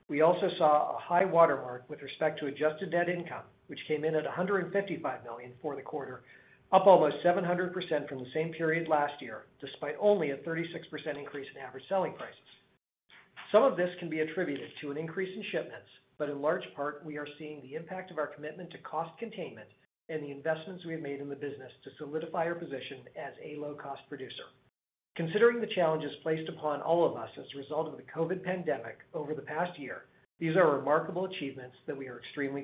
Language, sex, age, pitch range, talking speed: English, male, 50-69, 140-170 Hz, 200 wpm